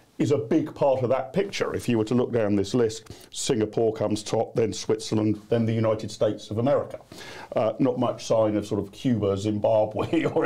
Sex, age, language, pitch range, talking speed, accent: male, 40-59, English, 110-160 Hz, 205 wpm, British